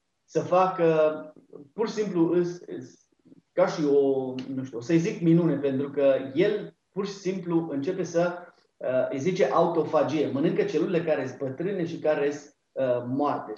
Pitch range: 140-185 Hz